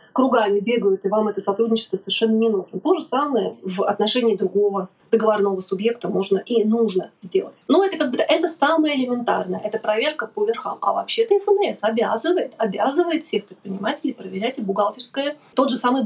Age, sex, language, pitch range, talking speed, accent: 20-39, female, Russian, 200-255 Hz, 170 wpm, native